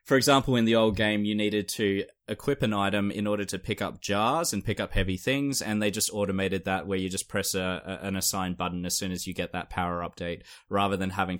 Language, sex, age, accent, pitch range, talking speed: English, male, 20-39, Australian, 90-110 Hz, 255 wpm